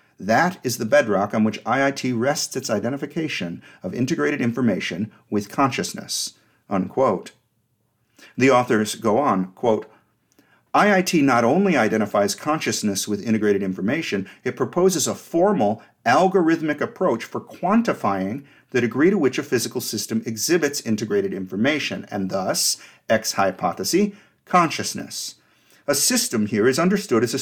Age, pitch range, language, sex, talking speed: 50-69, 105-165 Hz, English, male, 130 wpm